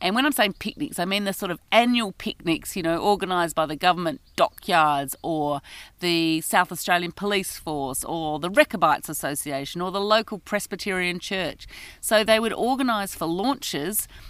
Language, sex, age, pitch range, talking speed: English, female, 40-59, 165-230 Hz, 170 wpm